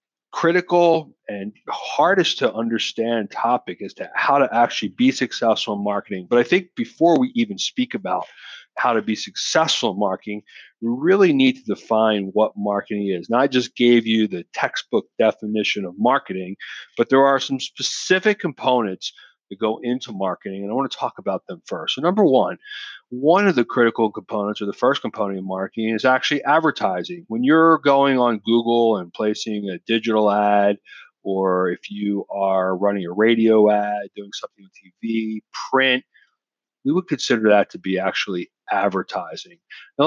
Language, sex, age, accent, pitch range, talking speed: English, male, 40-59, American, 100-130 Hz, 170 wpm